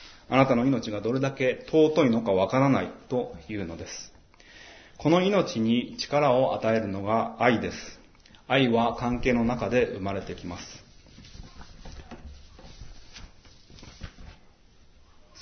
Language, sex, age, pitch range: Japanese, male, 30-49, 105-140 Hz